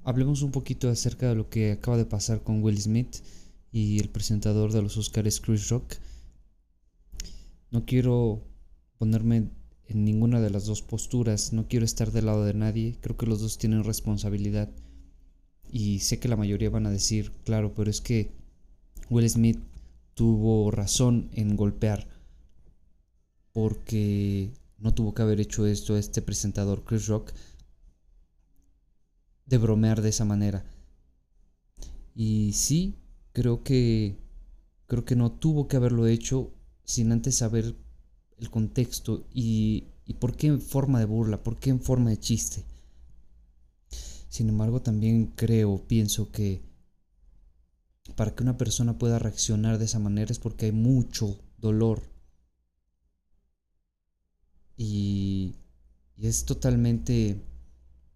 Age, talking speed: 20-39, 135 wpm